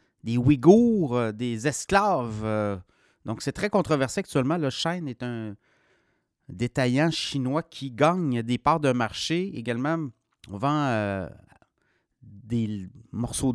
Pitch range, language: 120-160 Hz, French